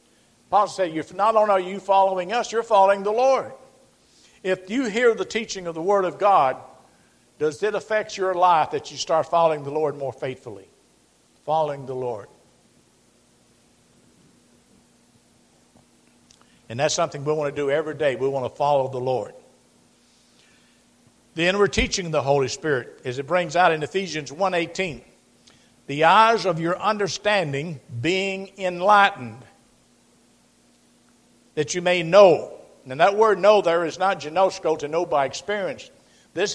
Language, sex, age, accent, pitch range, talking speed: English, male, 60-79, American, 160-205 Hz, 150 wpm